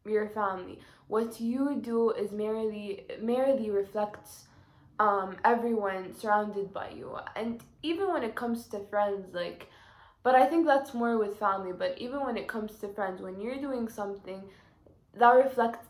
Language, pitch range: English, 195-230 Hz